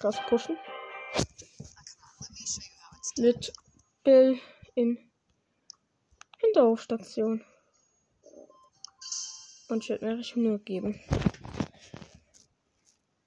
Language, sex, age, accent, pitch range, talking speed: German, female, 10-29, German, 215-270 Hz, 60 wpm